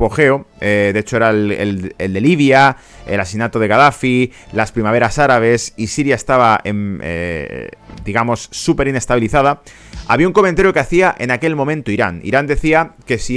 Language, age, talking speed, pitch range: Spanish, 30-49, 170 wpm, 110-145 Hz